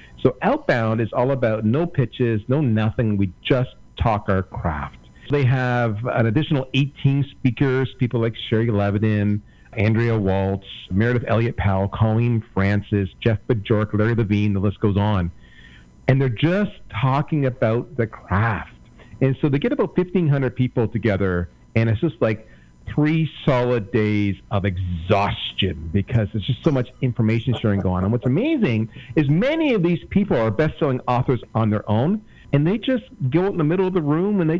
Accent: American